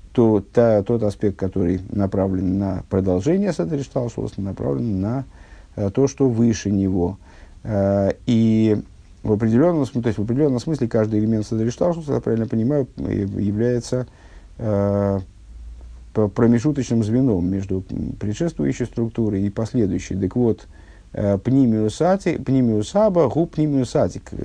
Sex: male